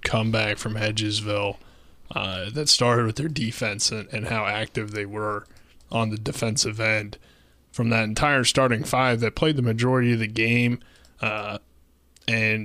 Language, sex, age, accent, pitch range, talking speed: English, male, 20-39, American, 110-125 Hz, 155 wpm